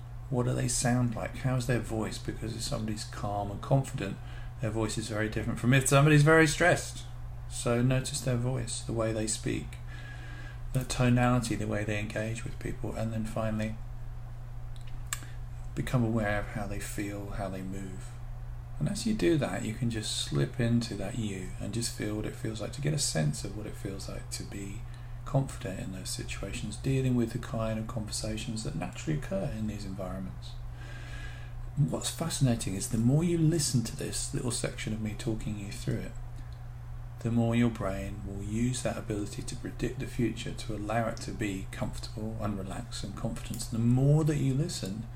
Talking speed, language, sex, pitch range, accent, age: 185 wpm, English, male, 110-125 Hz, British, 40-59